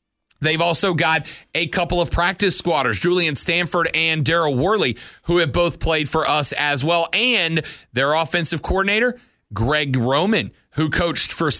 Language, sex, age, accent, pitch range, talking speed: English, male, 30-49, American, 135-175 Hz, 155 wpm